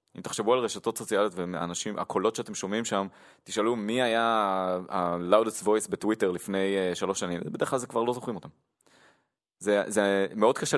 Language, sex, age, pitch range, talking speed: Hebrew, male, 20-39, 90-115 Hz, 165 wpm